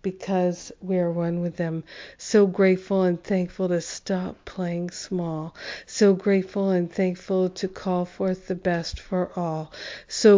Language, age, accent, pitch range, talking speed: English, 50-69, American, 175-195 Hz, 150 wpm